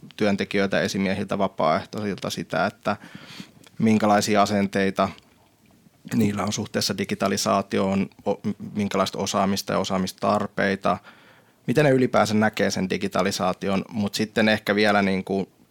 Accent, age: native, 20-39